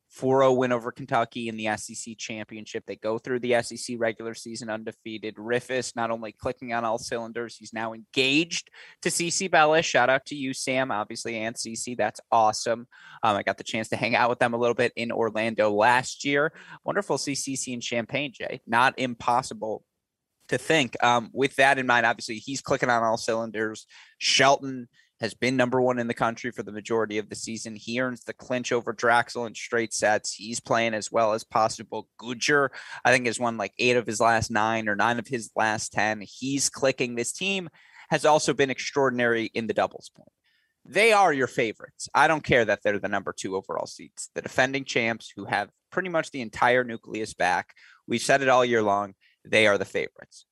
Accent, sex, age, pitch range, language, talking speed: American, male, 20-39, 115-130 Hz, English, 200 wpm